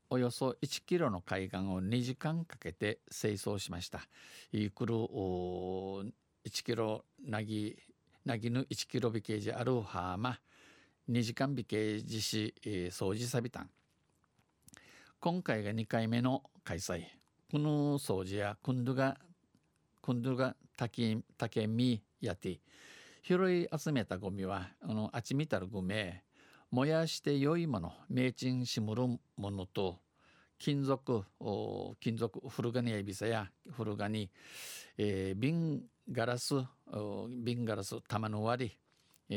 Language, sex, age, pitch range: Japanese, male, 50-69, 100-135 Hz